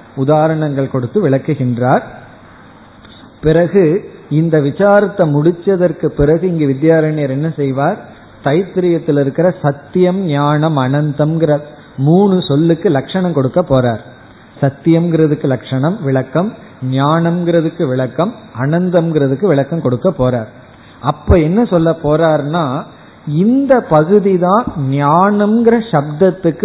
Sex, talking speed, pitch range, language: male, 90 wpm, 140-180 Hz, Tamil